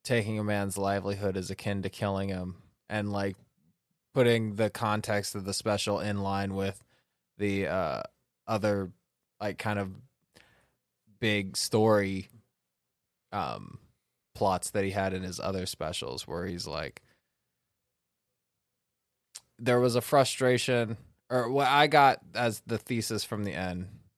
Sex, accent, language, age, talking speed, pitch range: male, American, English, 20-39, 135 wpm, 95-115 Hz